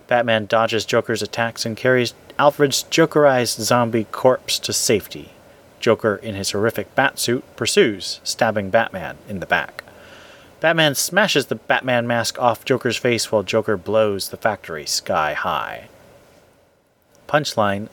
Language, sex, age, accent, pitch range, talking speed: English, male, 30-49, American, 110-135 Hz, 135 wpm